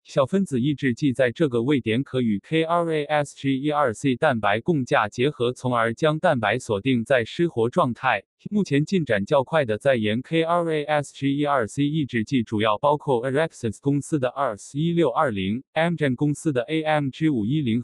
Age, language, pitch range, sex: 20-39, Chinese, 125-165 Hz, male